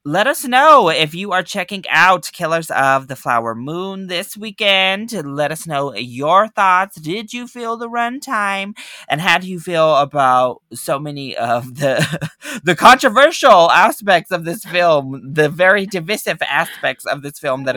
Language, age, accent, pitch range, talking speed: English, 20-39, American, 125-175 Hz, 165 wpm